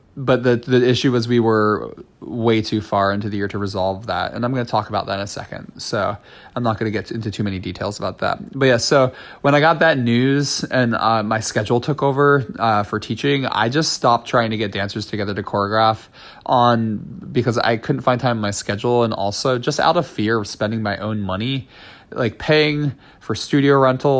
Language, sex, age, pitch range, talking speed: English, male, 20-39, 105-130 Hz, 225 wpm